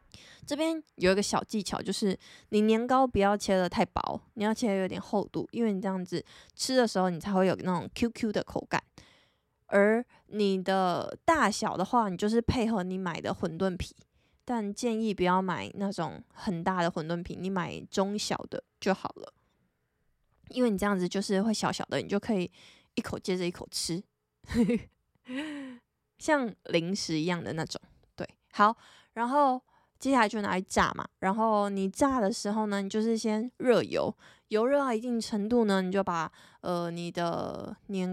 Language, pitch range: Chinese, 185-230 Hz